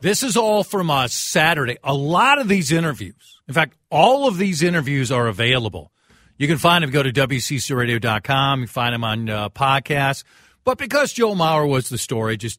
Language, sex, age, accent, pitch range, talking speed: English, male, 50-69, American, 120-185 Hz, 195 wpm